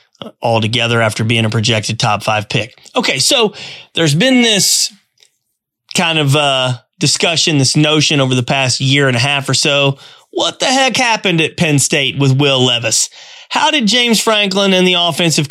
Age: 30-49